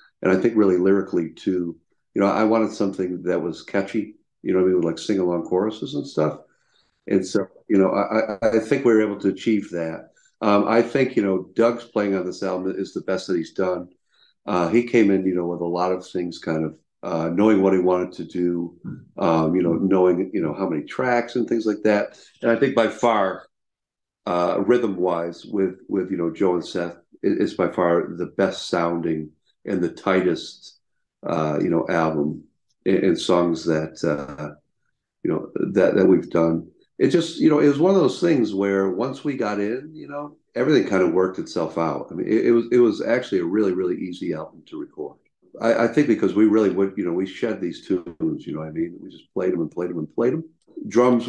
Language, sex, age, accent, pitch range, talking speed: English, male, 50-69, American, 90-115 Hz, 220 wpm